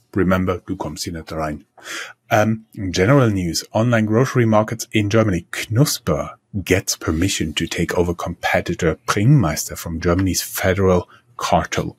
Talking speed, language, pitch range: 125 wpm, English, 95-115 Hz